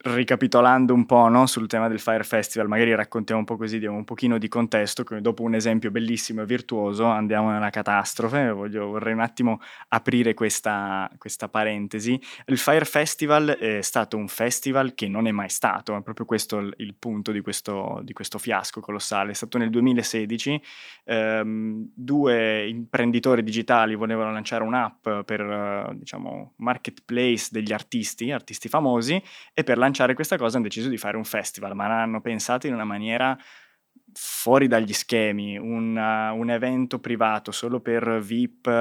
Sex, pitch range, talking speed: male, 110-125 Hz, 160 wpm